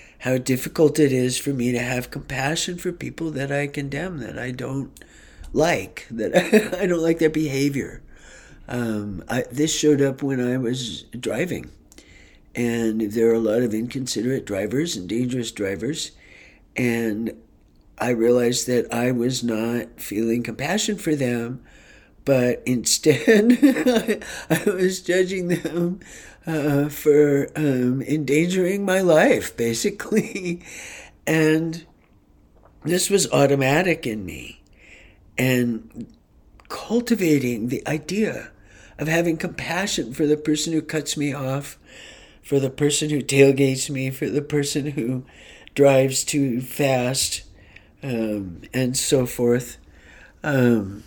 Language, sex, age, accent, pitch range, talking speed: English, male, 50-69, American, 120-155 Hz, 125 wpm